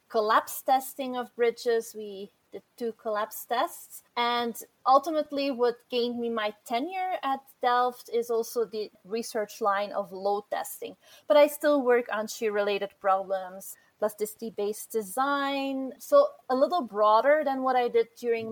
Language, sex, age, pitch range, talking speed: English, female, 30-49, 210-260 Hz, 145 wpm